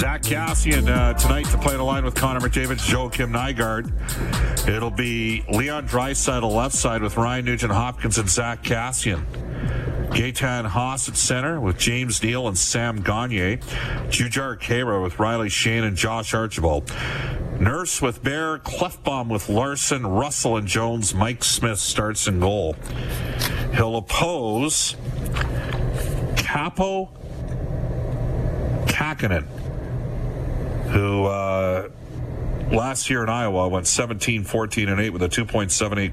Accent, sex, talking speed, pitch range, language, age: American, male, 125 wpm, 100-125 Hz, English, 50-69